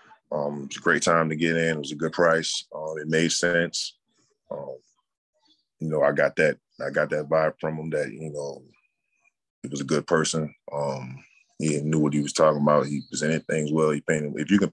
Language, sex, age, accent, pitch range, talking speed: English, male, 20-39, American, 75-85 Hz, 225 wpm